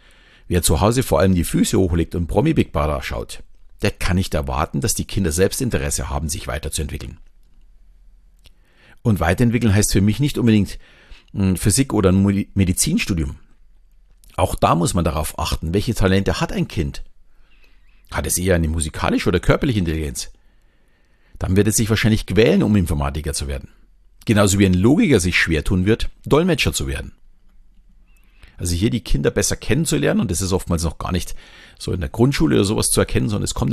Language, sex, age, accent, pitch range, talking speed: German, male, 50-69, German, 85-110 Hz, 180 wpm